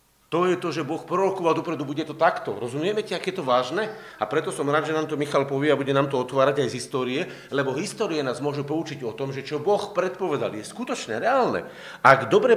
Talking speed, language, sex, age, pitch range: 230 wpm, Slovak, male, 50-69, 135-180 Hz